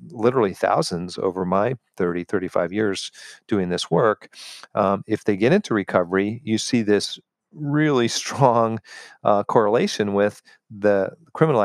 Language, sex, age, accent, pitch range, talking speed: English, male, 40-59, American, 95-115 Hz, 135 wpm